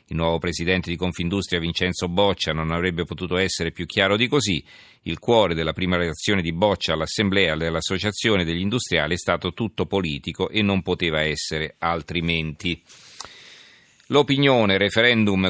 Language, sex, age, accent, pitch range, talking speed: Italian, male, 40-59, native, 85-100 Hz, 145 wpm